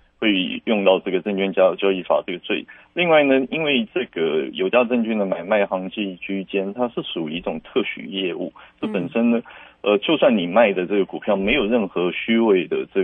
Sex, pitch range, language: male, 95-125 Hz, Chinese